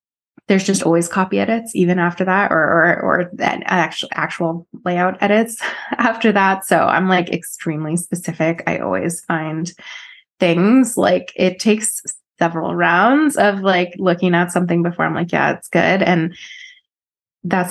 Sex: female